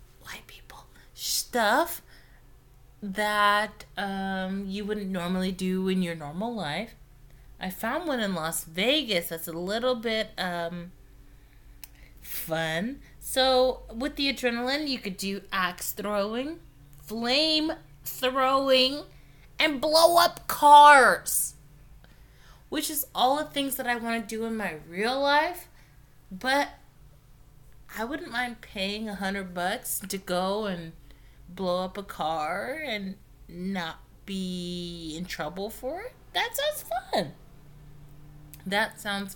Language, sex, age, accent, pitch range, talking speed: English, female, 30-49, American, 150-225 Hz, 120 wpm